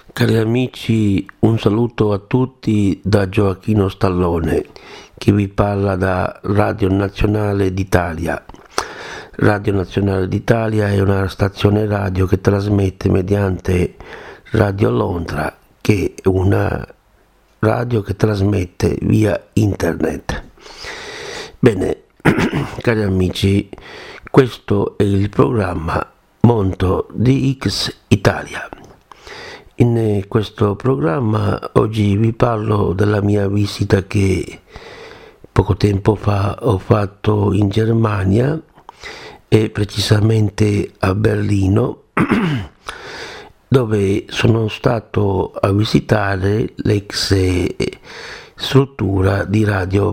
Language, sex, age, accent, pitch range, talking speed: Italian, male, 60-79, native, 95-110 Hz, 90 wpm